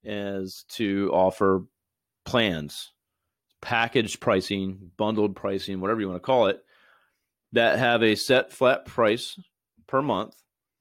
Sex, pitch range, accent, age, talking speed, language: male, 95-120 Hz, American, 30-49, 120 wpm, English